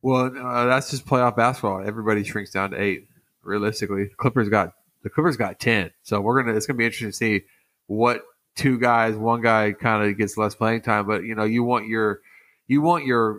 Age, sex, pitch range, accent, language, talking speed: 20-39, male, 105-115 Hz, American, English, 210 wpm